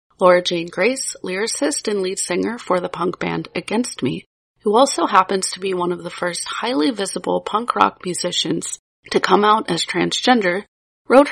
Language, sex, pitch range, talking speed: English, female, 180-235 Hz, 175 wpm